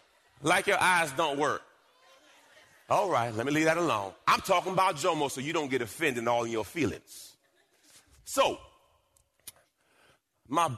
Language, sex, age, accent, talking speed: English, male, 40-59, American, 150 wpm